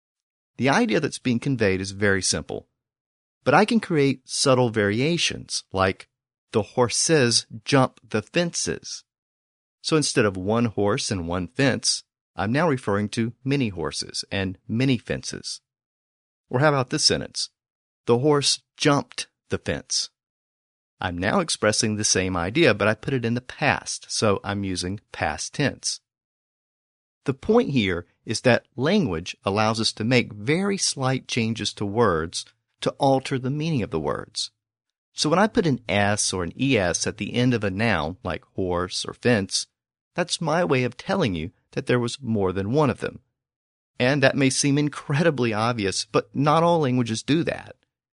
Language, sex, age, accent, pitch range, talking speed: English, male, 40-59, American, 100-135 Hz, 165 wpm